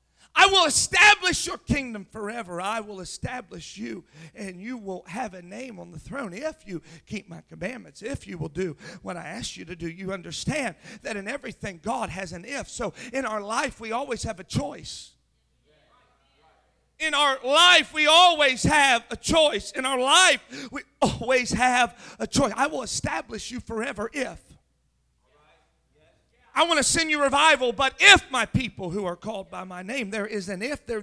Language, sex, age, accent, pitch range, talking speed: English, male, 40-59, American, 215-290 Hz, 185 wpm